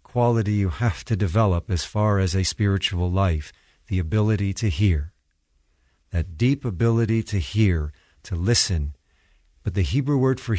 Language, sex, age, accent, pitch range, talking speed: English, male, 50-69, American, 85-115 Hz, 155 wpm